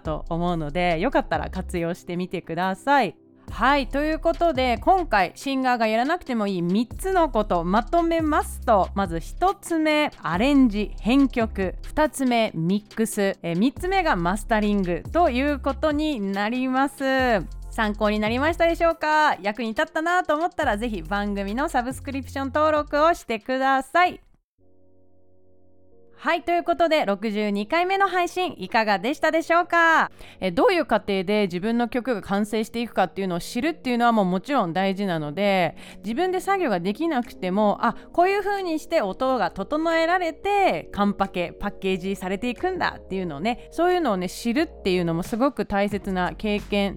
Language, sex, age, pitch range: Japanese, female, 30-49, 190-295 Hz